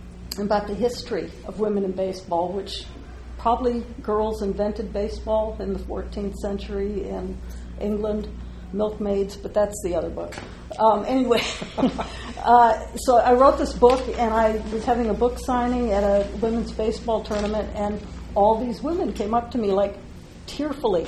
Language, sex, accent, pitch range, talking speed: English, female, American, 195-230 Hz, 155 wpm